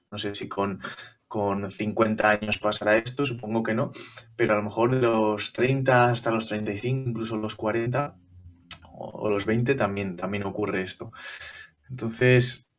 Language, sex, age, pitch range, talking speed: Spanish, male, 20-39, 100-120 Hz, 160 wpm